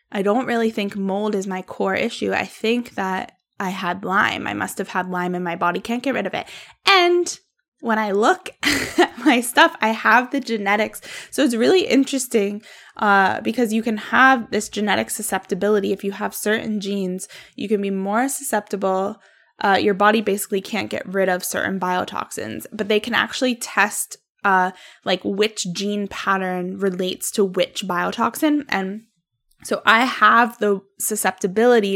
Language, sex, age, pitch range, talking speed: English, female, 10-29, 190-230 Hz, 170 wpm